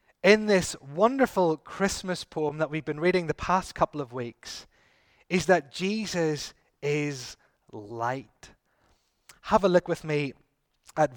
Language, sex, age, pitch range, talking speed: English, male, 30-49, 140-205 Hz, 135 wpm